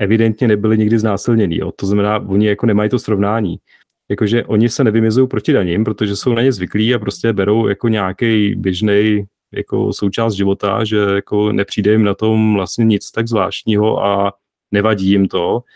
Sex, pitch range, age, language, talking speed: male, 105-125 Hz, 30-49, Czech, 170 wpm